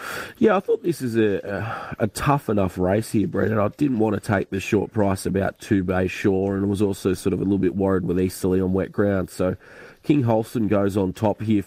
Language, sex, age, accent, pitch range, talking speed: English, male, 30-49, Australian, 95-105 Hz, 230 wpm